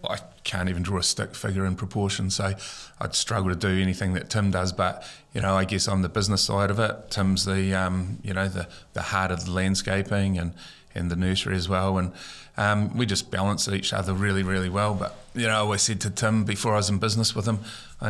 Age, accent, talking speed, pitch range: 30-49, British, 240 wpm, 90-100 Hz